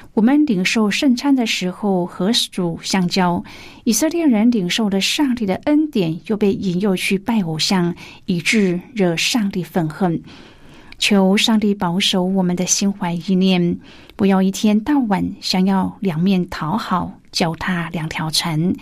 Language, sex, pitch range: Chinese, female, 175-225 Hz